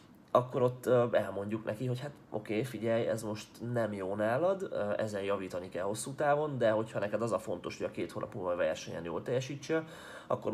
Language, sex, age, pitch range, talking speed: Hungarian, male, 30-49, 105-130 Hz, 190 wpm